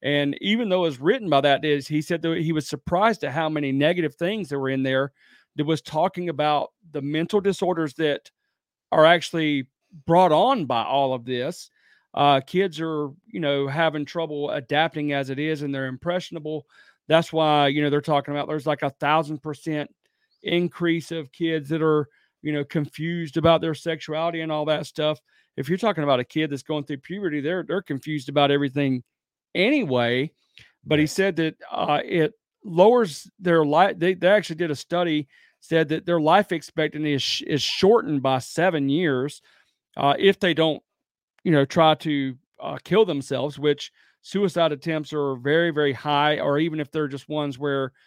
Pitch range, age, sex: 140-165 Hz, 40-59, male